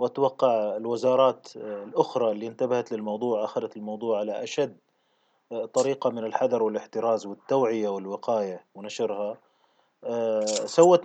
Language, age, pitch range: Arabic, 30-49, 110-145 Hz